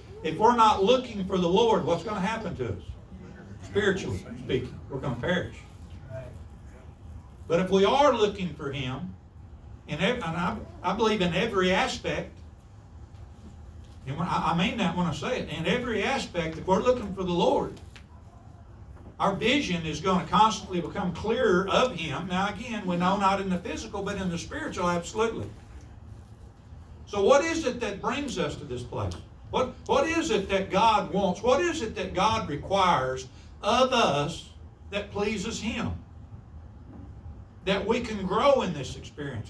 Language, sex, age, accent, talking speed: English, male, 60-79, American, 165 wpm